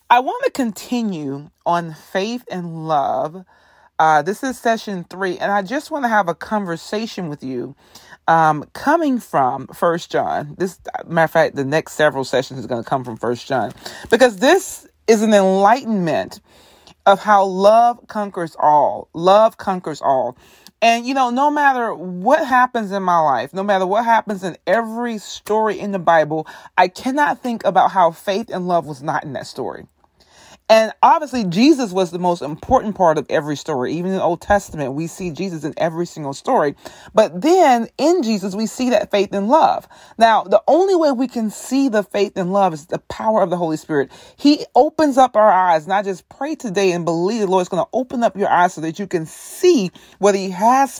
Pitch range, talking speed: 170-230 Hz, 200 wpm